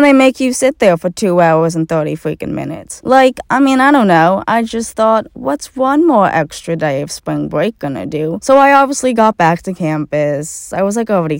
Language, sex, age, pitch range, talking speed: English, female, 20-39, 165-235 Hz, 220 wpm